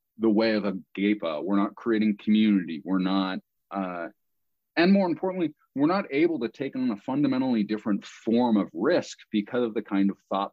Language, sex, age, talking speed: English, male, 30-49, 190 wpm